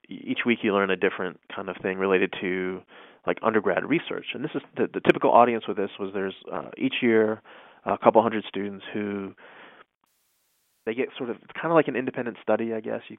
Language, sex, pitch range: English, male, 100-120 Hz